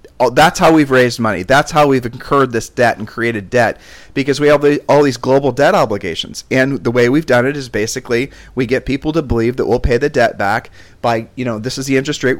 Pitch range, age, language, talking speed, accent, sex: 115-135 Hz, 40-59, English, 235 wpm, American, male